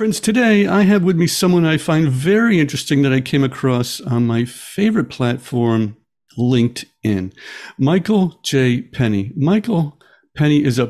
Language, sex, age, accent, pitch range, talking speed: English, male, 50-69, American, 115-150 Hz, 150 wpm